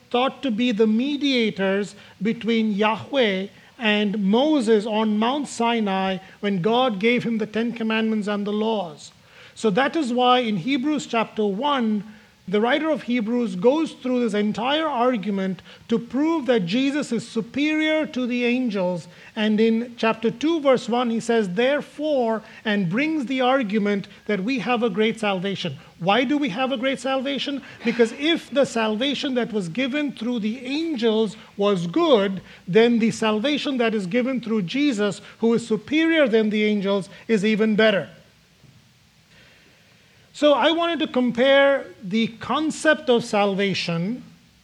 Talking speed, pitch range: 150 wpm, 215-255 Hz